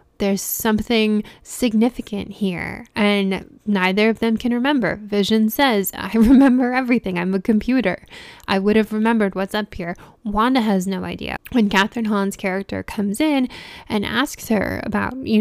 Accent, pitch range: American, 195-230 Hz